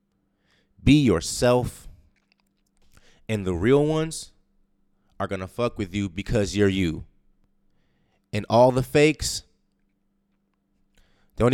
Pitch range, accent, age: 95-125 Hz, American, 20-39